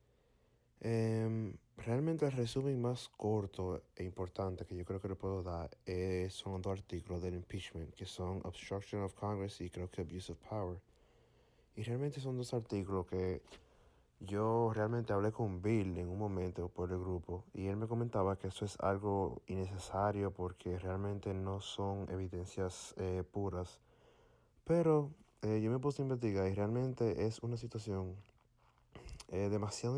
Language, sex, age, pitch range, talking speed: Spanish, male, 30-49, 90-110 Hz, 160 wpm